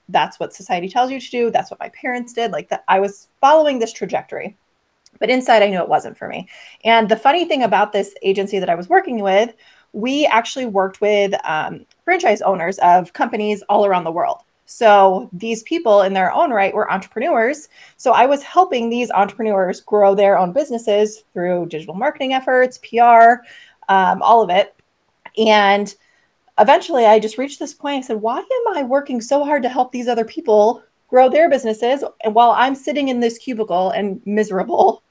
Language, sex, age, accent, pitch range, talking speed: English, female, 30-49, American, 205-275 Hz, 190 wpm